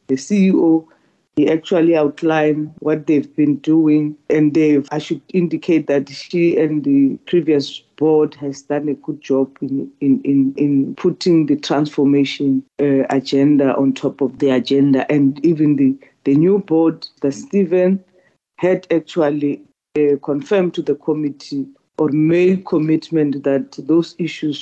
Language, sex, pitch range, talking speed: English, female, 140-165 Hz, 145 wpm